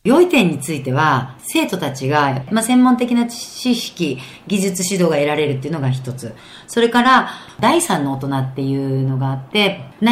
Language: Japanese